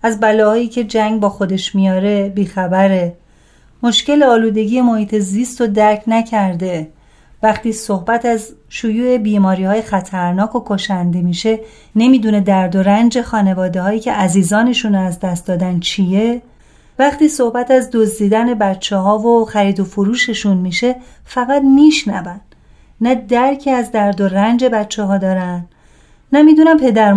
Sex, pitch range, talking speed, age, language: female, 195-235 Hz, 135 wpm, 40-59, Persian